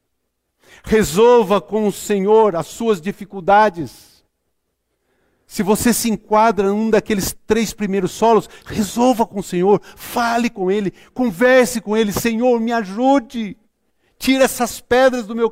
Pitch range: 160-215 Hz